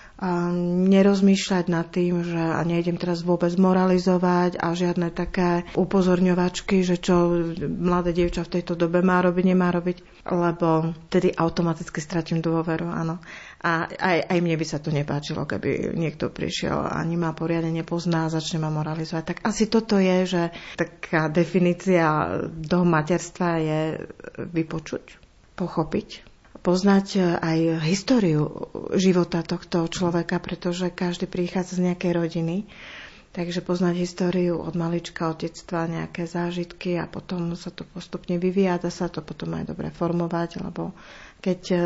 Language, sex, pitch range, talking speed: Slovak, female, 170-185 Hz, 140 wpm